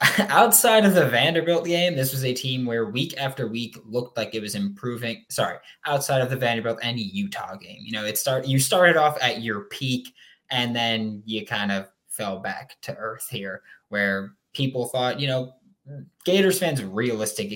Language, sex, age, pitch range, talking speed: English, male, 20-39, 105-135 Hz, 185 wpm